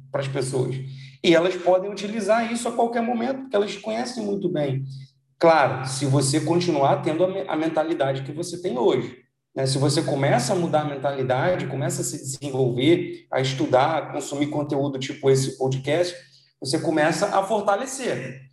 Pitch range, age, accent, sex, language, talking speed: 135-190 Hz, 40-59, Brazilian, male, Portuguese, 170 wpm